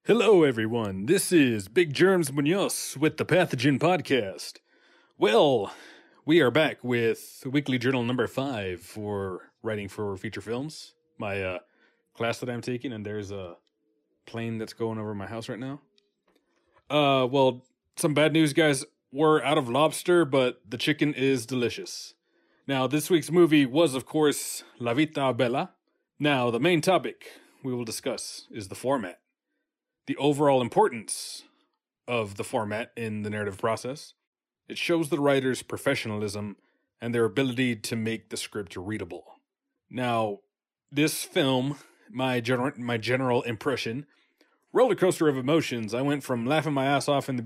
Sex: male